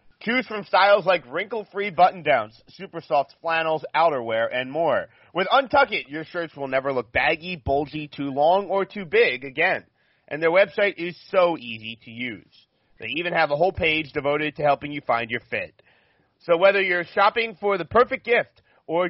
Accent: American